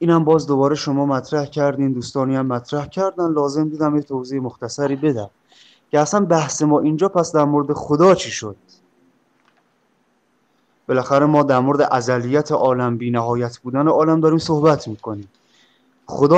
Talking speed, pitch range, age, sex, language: 145 wpm, 125-165 Hz, 30-49, male, Persian